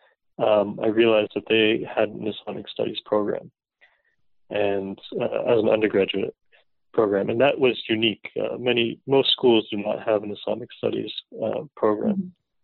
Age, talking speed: 30-49, 150 wpm